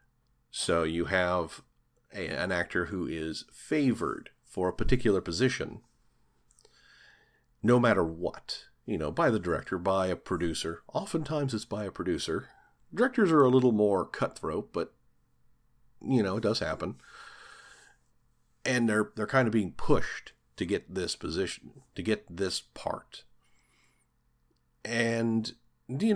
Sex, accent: male, American